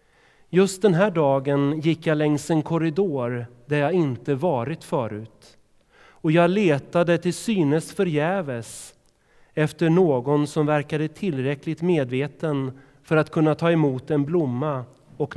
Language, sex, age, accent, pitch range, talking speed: Swedish, male, 30-49, native, 130-165 Hz, 135 wpm